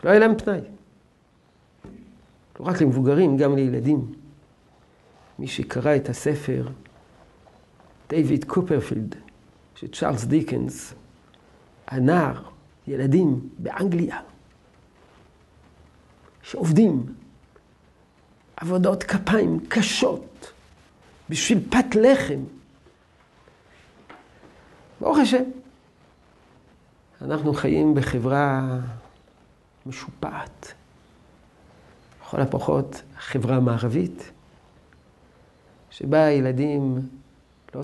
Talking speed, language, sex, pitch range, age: 65 wpm, Hebrew, male, 120-175 Hz, 50-69